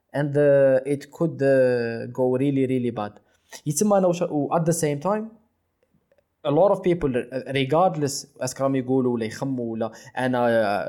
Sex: male